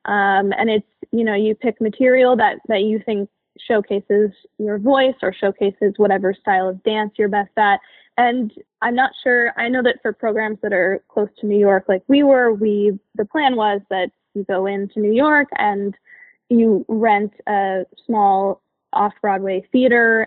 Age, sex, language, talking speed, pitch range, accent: 10-29, female, English, 175 wpm, 200-245 Hz, American